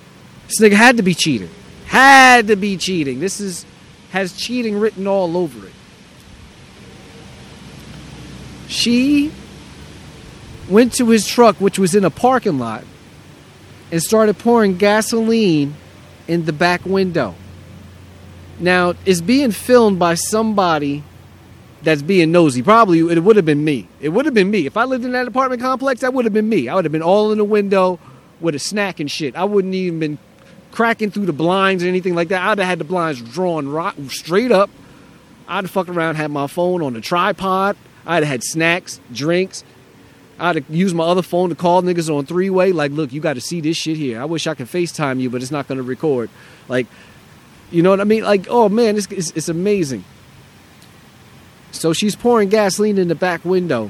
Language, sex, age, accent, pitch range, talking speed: English, male, 30-49, American, 155-210 Hz, 190 wpm